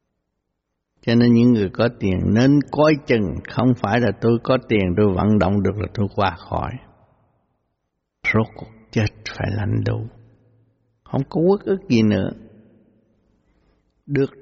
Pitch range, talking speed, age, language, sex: 110-140 Hz, 150 wpm, 60-79, Vietnamese, male